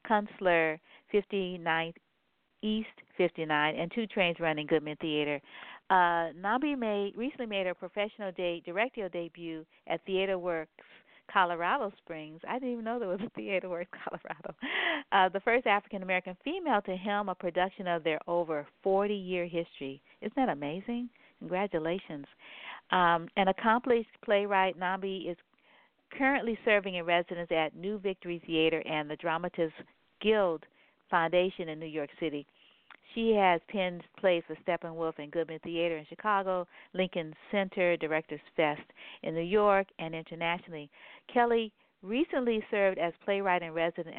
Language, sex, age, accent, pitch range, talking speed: English, female, 50-69, American, 160-200 Hz, 145 wpm